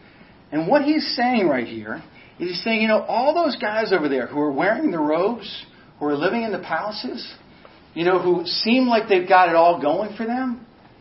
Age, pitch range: 40-59, 175-255 Hz